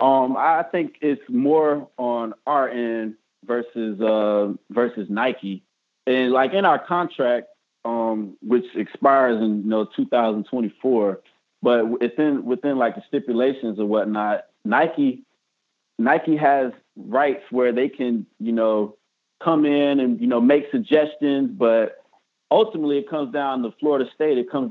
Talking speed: 140 wpm